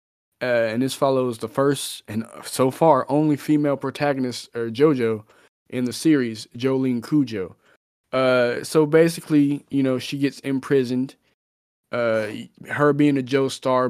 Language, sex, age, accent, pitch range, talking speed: English, male, 20-39, American, 115-140 Hz, 140 wpm